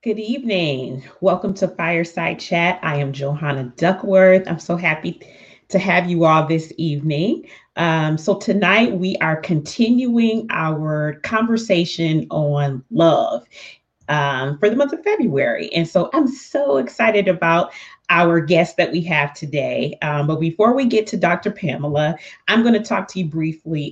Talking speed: 155 wpm